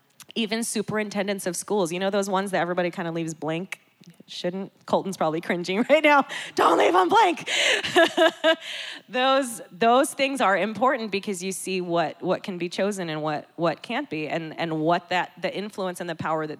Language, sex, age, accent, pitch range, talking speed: English, female, 20-39, American, 160-195 Hz, 190 wpm